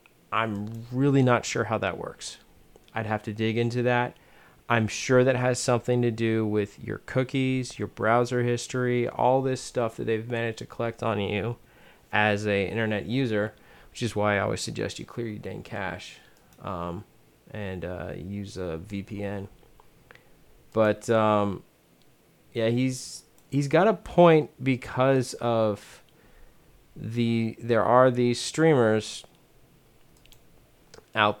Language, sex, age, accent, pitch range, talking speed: English, male, 30-49, American, 105-125 Hz, 140 wpm